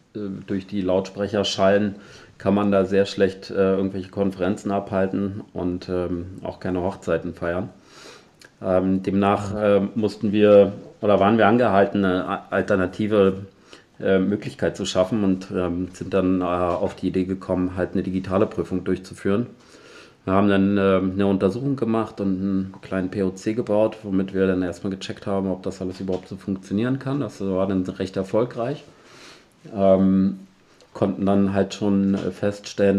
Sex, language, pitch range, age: male, German, 95-105 Hz, 30-49